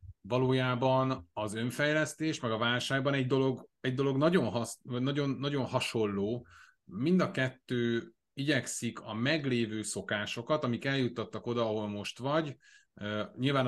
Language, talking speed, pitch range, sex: Hungarian, 115 wpm, 110-130 Hz, male